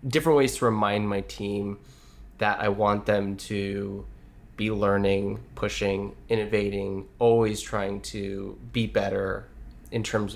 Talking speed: 125 wpm